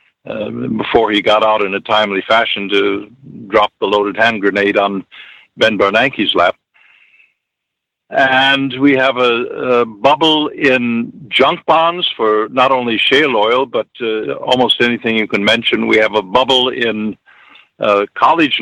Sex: male